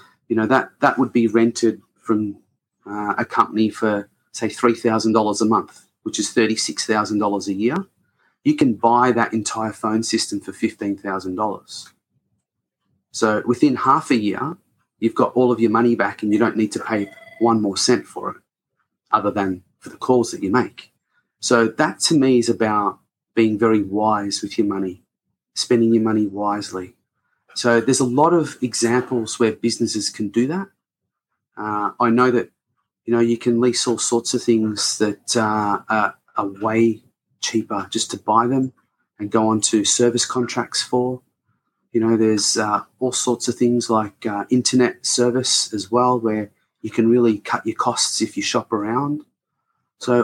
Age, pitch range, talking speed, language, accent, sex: 30-49, 110-125 Hz, 170 wpm, English, Australian, male